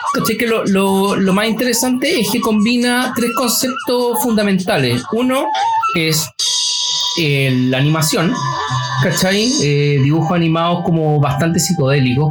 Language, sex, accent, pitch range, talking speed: Spanish, male, Argentinian, 150-205 Hz, 115 wpm